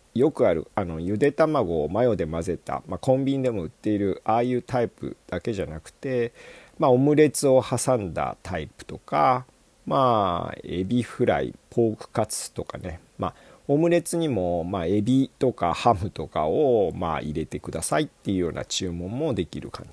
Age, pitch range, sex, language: 40-59, 95-145 Hz, male, Japanese